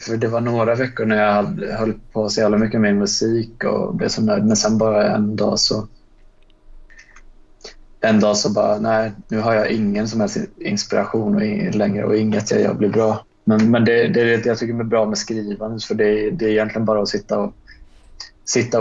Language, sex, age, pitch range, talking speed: Swedish, male, 20-39, 105-115 Hz, 210 wpm